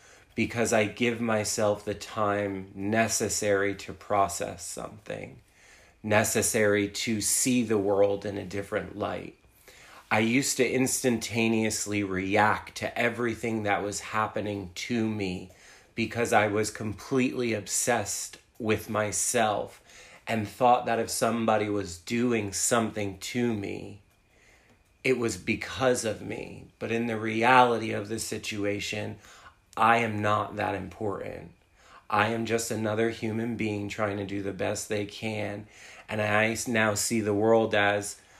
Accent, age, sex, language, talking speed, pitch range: American, 30-49, male, English, 135 wpm, 100-115 Hz